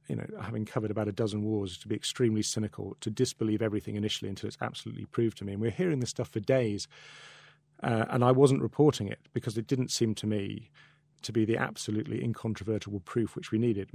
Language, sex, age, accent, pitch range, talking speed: English, male, 40-59, British, 105-115 Hz, 215 wpm